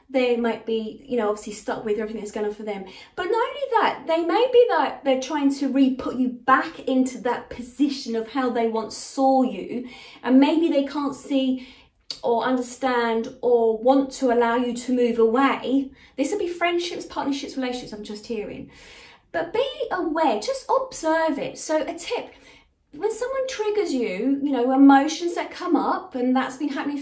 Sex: female